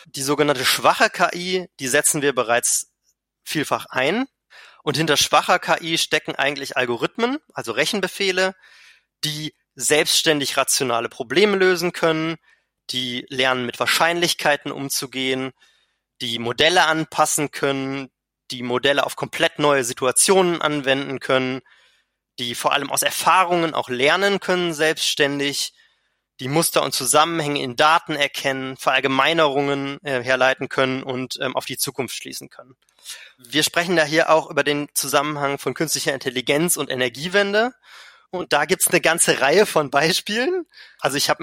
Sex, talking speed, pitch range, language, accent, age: male, 135 wpm, 135-170 Hz, German, German, 20-39